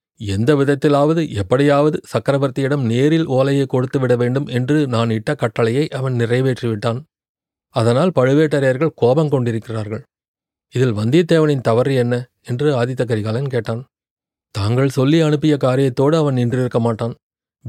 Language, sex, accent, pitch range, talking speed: Tamil, male, native, 115-140 Hz, 110 wpm